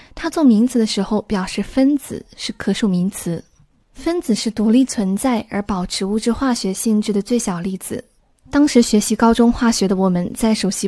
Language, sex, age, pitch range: Chinese, female, 20-39, 200-250 Hz